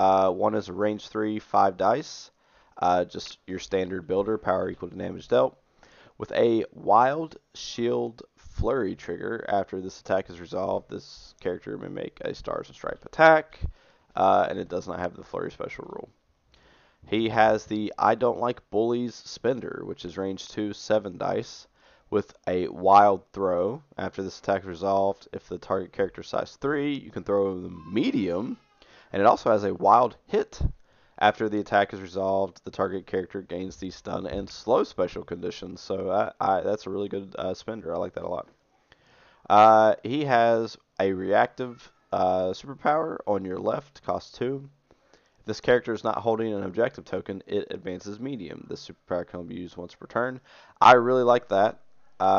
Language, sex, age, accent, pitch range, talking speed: English, male, 20-39, American, 95-115 Hz, 180 wpm